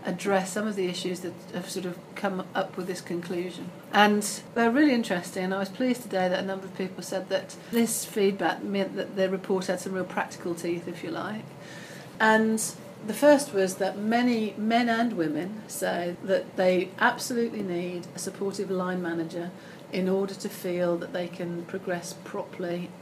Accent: British